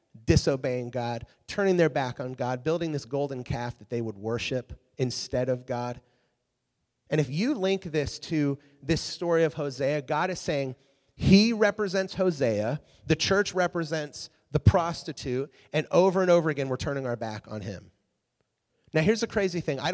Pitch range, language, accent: 120-160 Hz, English, American